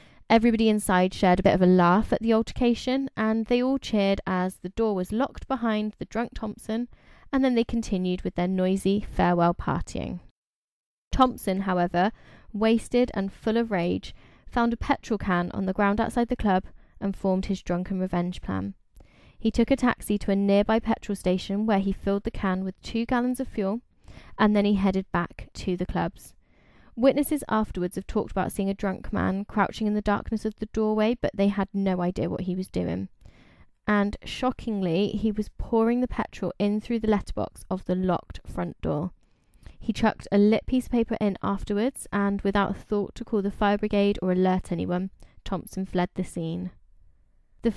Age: 20-39